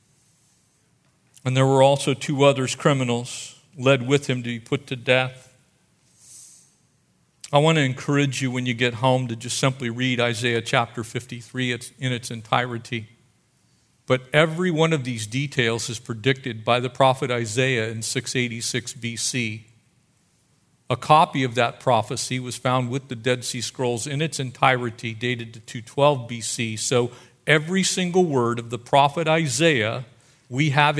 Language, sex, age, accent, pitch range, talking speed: English, male, 50-69, American, 120-140 Hz, 150 wpm